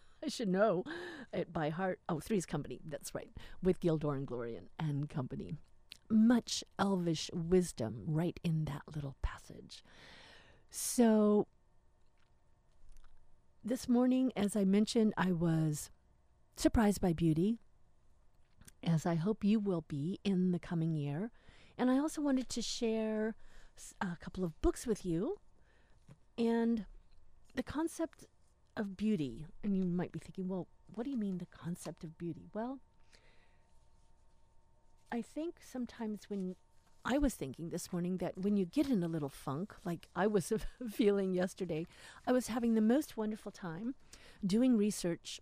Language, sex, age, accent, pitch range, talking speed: English, female, 50-69, American, 170-225 Hz, 145 wpm